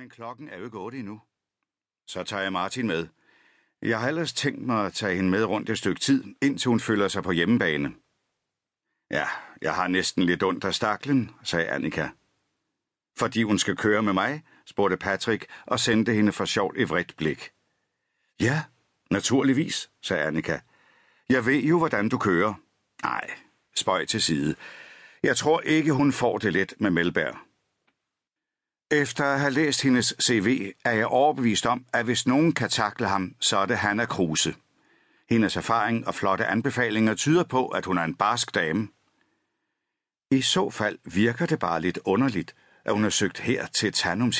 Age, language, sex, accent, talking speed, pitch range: 60-79, Danish, male, native, 175 wpm, 100-135 Hz